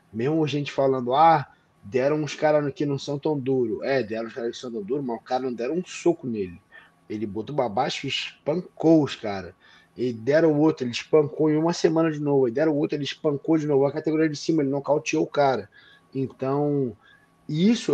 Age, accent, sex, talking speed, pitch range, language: 20-39, Brazilian, male, 215 wpm, 120-155 Hz, Portuguese